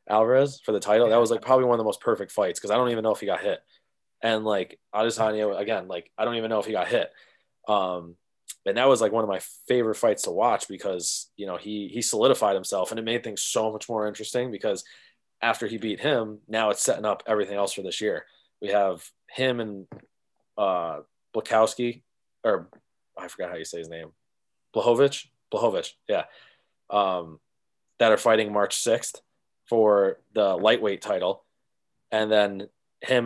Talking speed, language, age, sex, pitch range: 195 wpm, English, 20-39, male, 105-140 Hz